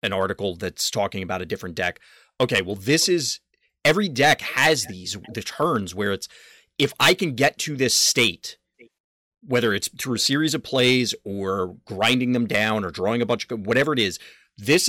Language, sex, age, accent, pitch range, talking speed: English, male, 30-49, American, 95-130 Hz, 190 wpm